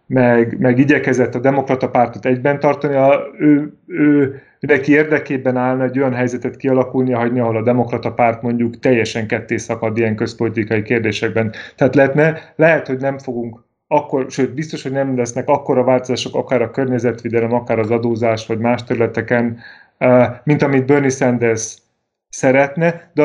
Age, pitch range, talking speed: 30-49, 120-145 Hz, 155 wpm